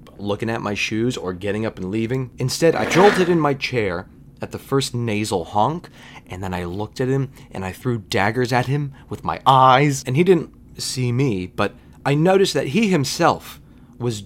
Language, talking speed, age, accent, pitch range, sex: English, 200 wpm, 30-49, American, 110-155 Hz, male